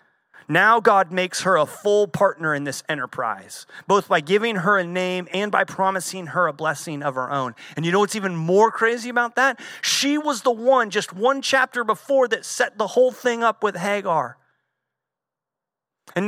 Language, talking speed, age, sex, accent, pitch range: English, 190 wpm, 30-49, male, American, 175-215 Hz